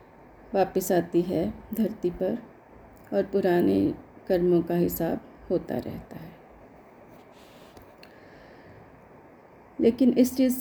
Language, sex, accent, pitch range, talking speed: Hindi, female, native, 190-235 Hz, 90 wpm